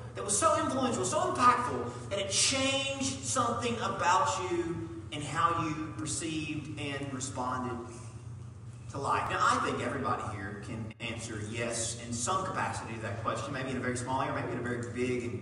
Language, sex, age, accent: English, male, 30-49, American